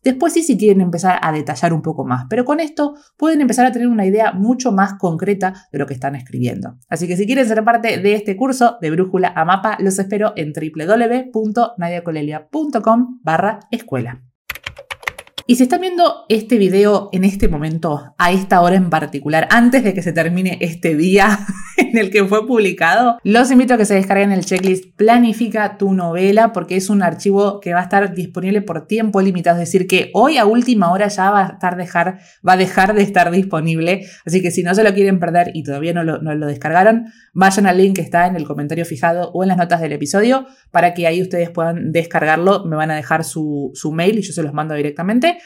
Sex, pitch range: female, 160-215 Hz